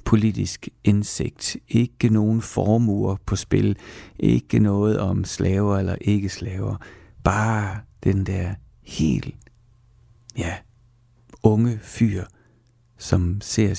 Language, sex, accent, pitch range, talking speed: Danish, male, native, 95-120 Hz, 100 wpm